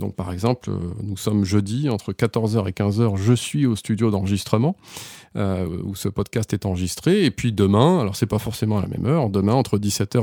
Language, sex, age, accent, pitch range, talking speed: French, male, 30-49, French, 100-125 Hz, 205 wpm